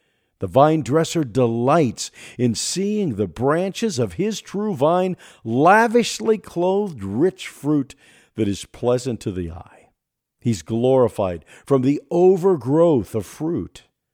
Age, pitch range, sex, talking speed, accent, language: 50-69, 110-170 Hz, male, 125 wpm, American, English